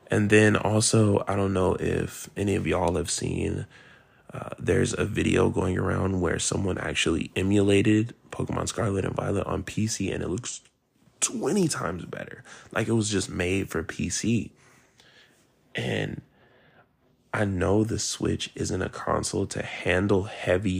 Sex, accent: male, American